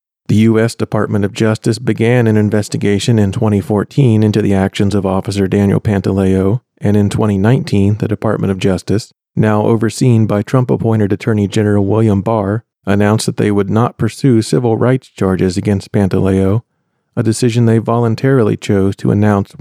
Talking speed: 155 wpm